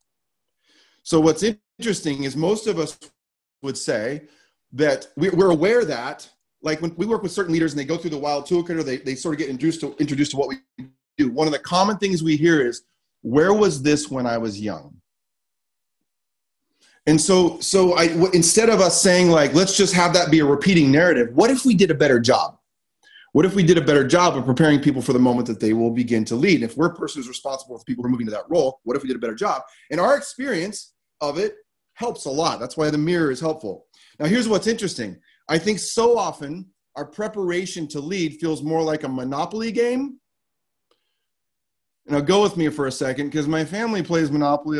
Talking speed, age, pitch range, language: 215 wpm, 30-49, 140-190 Hz, English